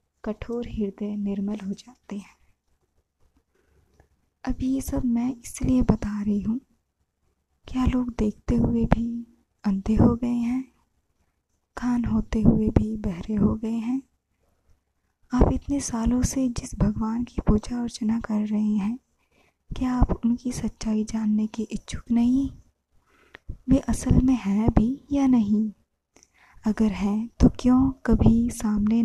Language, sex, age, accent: Hindi, female, 20-39, native